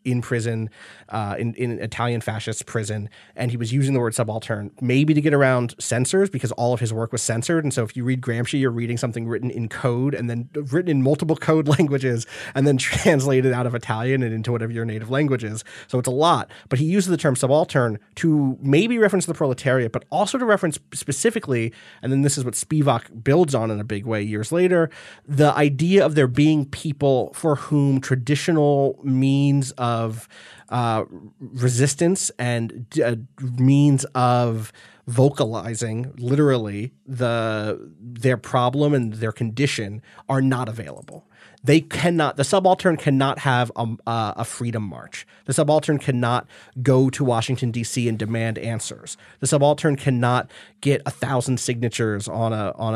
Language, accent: English, American